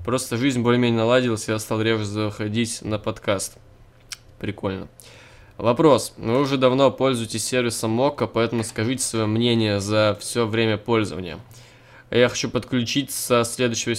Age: 20-39